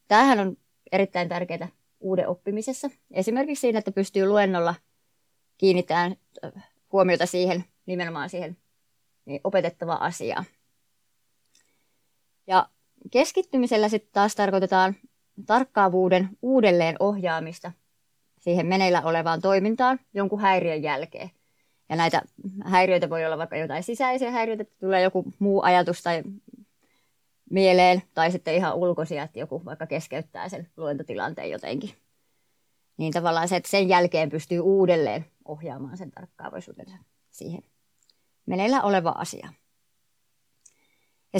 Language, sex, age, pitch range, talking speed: Finnish, female, 20-39, 165-200 Hz, 105 wpm